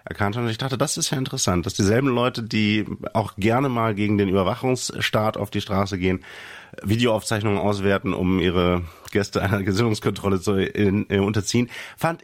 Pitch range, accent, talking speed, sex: 95-110 Hz, German, 160 wpm, male